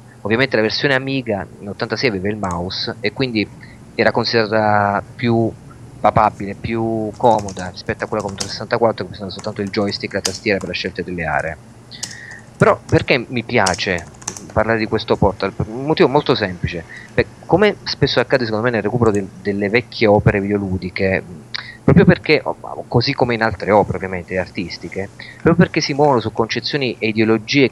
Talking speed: 170 wpm